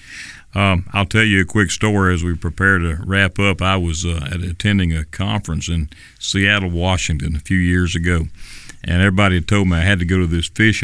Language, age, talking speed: English, 40-59, 205 wpm